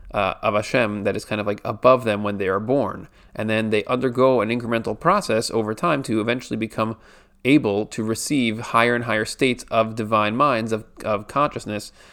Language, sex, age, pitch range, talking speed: English, male, 30-49, 105-120 Hz, 195 wpm